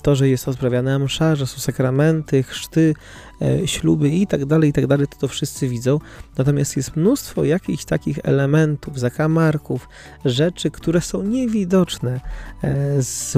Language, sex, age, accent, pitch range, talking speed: Polish, male, 20-39, native, 130-155 Hz, 125 wpm